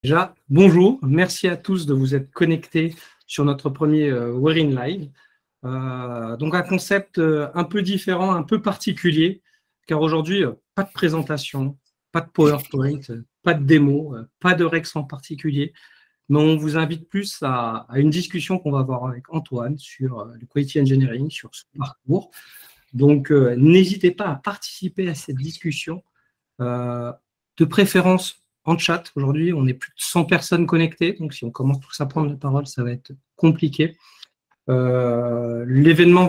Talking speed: 170 wpm